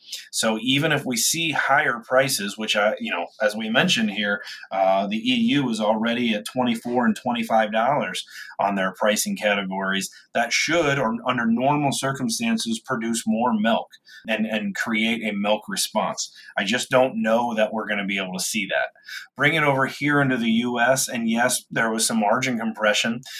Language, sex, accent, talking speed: English, male, American, 180 wpm